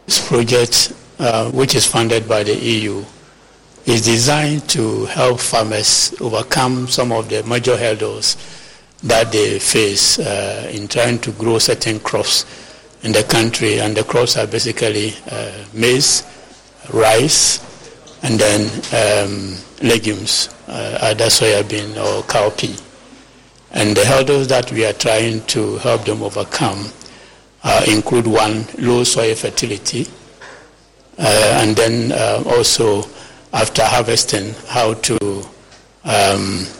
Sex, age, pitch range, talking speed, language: male, 60-79, 110-125 Hz, 130 wpm, English